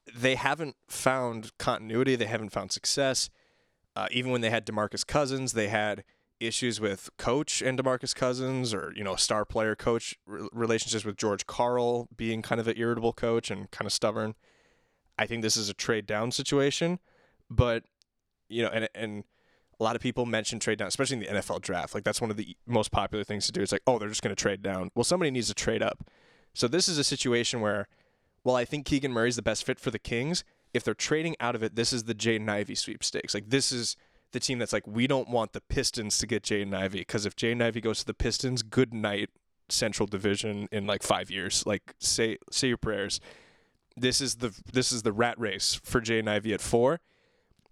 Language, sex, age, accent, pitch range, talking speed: English, male, 20-39, American, 105-125 Hz, 220 wpm